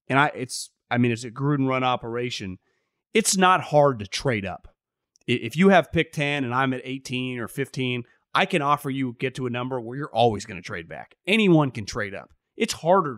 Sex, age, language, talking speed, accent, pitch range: male, 30-49, English, 215 wpm, American, 135-195 Hz